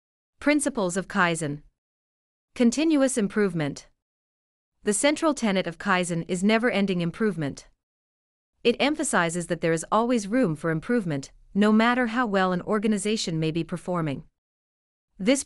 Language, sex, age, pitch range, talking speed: English, female, 40-59, 155-220 Hz, 125 wpm